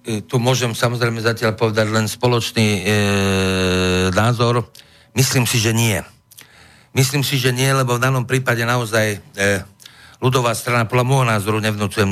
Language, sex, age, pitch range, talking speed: Slovak, male, 50-69, 100-120 Hz, 145 wpm